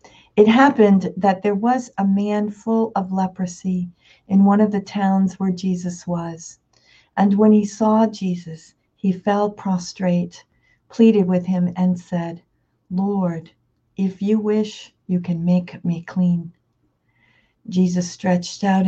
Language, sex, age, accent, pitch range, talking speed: English, female, 50-69, American, 180-205 Hz, 135 wpm